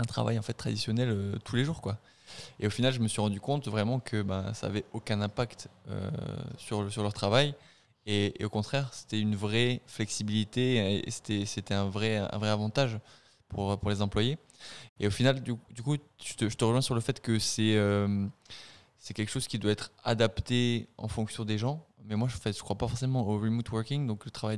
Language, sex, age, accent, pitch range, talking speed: French, male, 20-39, French, 100-120 Hz, 225 wpm